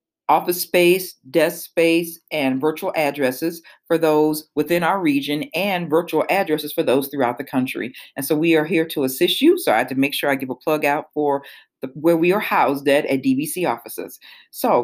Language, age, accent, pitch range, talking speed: English, 40-59, American, 145-190 Hz, 200 wpm